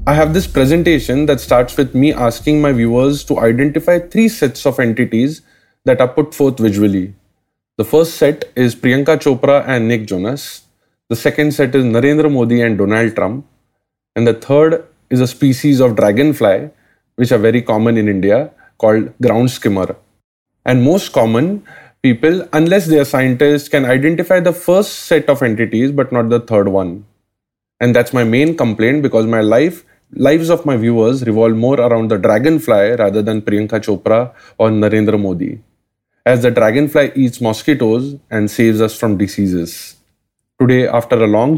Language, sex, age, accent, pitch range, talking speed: English, male, 20-39, Indian, 110-140 Hz, 165 wpm